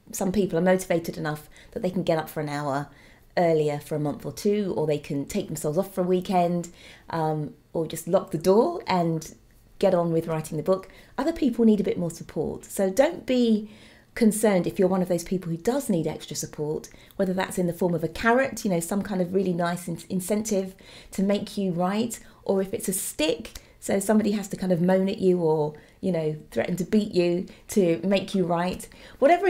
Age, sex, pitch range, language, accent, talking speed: 30-49, female, 170-225 Hz, English, British, 220 wpm